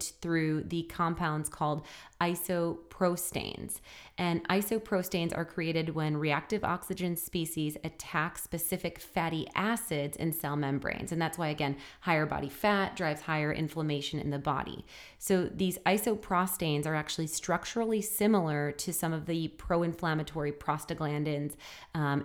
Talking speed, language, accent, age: 130 wpm, English, American, 30-49